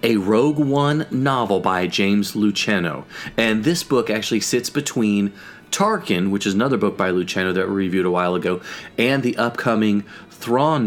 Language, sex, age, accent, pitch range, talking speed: English, male, 30-49, American, 95-120 Hz, 165 wpm